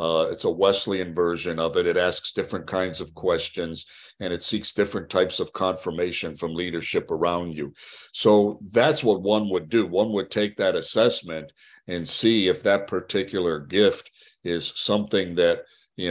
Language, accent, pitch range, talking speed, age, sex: English, American, 85-105 Hz, 170 wpm, 50-69, male